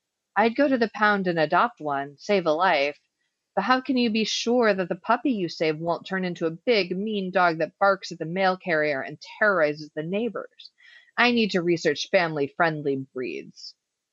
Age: 30-49